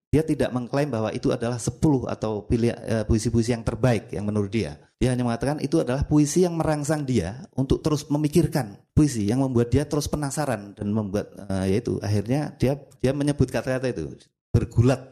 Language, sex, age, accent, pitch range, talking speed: Indonesian, male, 30-49, native, 105-135 Hz, 180 wpm